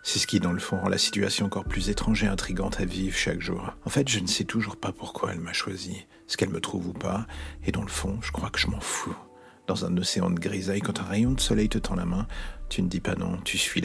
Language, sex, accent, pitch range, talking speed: French, male, French, 95-115 Hz, 285 wpm